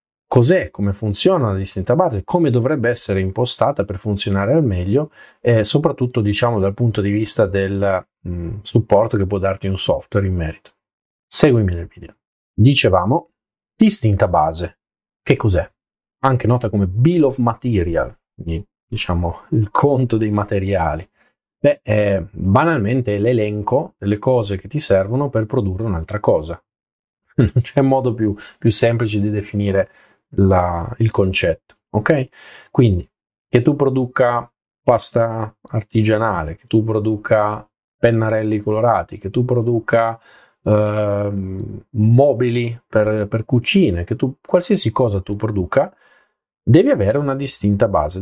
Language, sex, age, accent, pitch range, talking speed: Italian, male, 30-49, native, 100-125 Hz, 135 wpm